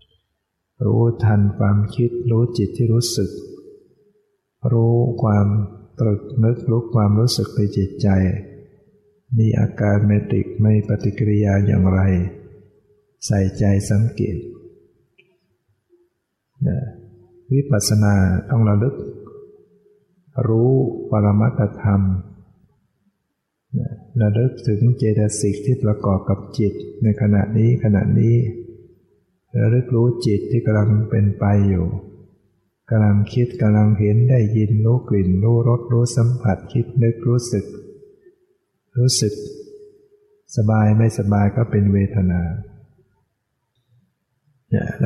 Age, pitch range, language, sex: 60-79, 105-125 Hz, Thai, male